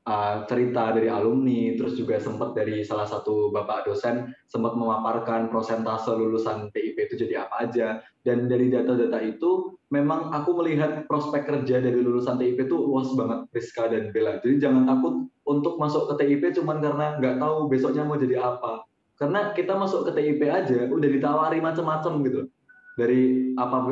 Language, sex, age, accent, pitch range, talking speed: Indonesian, male, 20-39, native, 120-150 Hz, 165 wpm